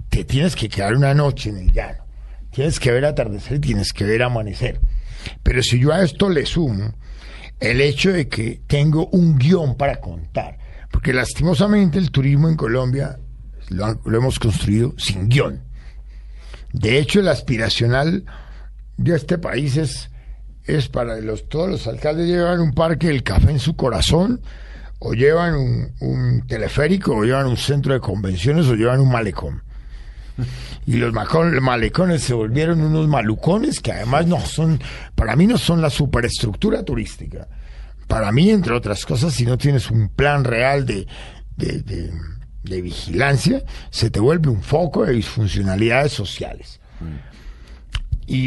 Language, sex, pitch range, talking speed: Spanish, male, 100-145 Hz, 150 wpm